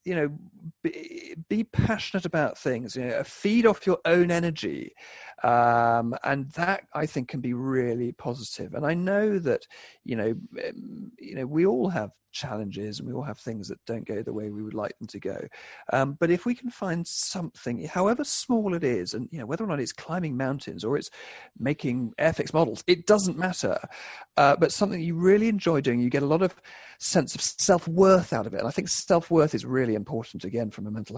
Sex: male